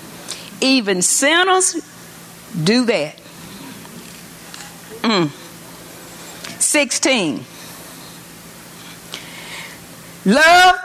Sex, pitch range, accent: female, 210-290 Hz, American